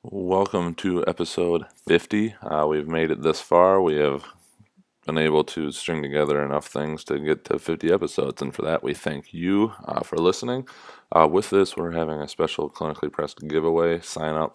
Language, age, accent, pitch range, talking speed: English, 20-39, American, 75-80 Hz, 180 wpm